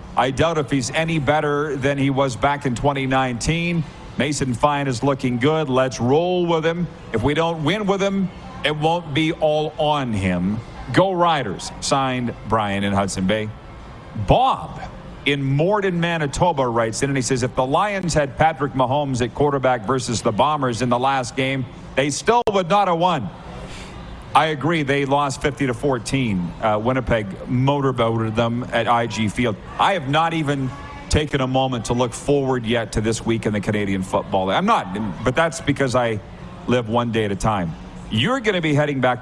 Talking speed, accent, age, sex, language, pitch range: 180 wpm, American, 50-69, male, English, 120-155 Hz